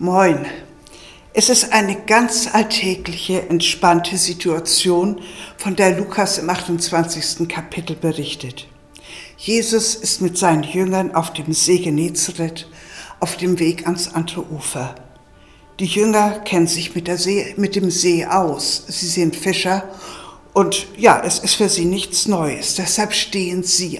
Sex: female